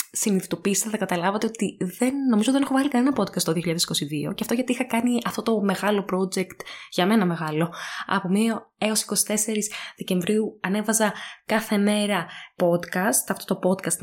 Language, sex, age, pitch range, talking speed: Greek, female, 20-39, 180-255 Hz, 155 wpm